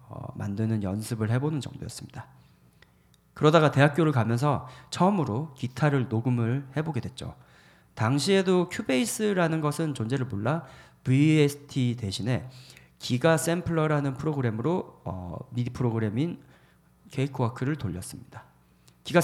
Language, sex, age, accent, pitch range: Korean, male, 40-59, native, 120-150 Hz